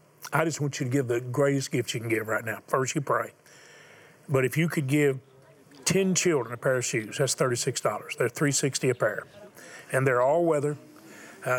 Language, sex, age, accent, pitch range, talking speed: English, male, 40-59, American, 125-150 Hz, 200 wpm